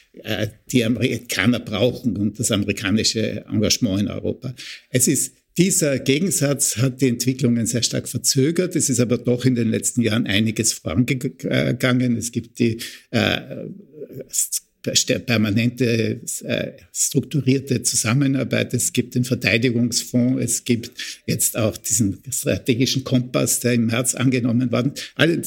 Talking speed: 125 wpm